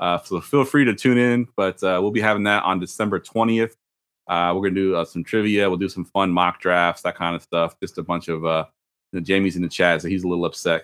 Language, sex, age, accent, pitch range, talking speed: English, male, 30-49, American, 90-105 Hz, 260 wpm